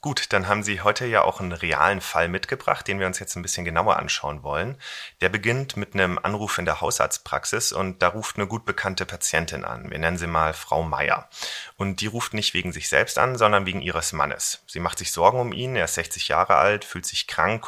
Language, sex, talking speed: German, male, 230 wpm